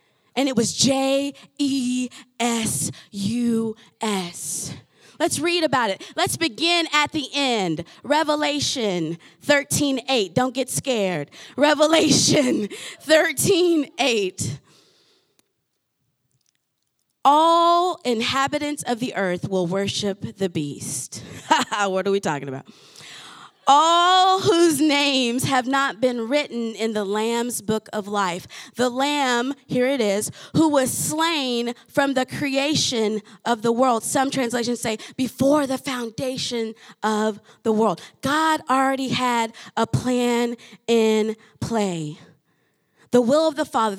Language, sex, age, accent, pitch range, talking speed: English, female, 20-39, American, 210-285 Hz, 110 wpm